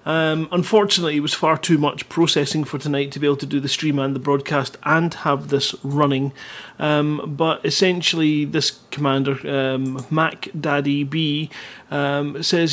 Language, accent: English, British